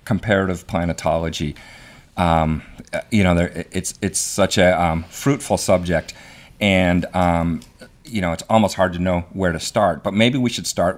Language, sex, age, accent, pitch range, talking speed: English, male, 40-59, American, 85-105 Hz, 165 wpm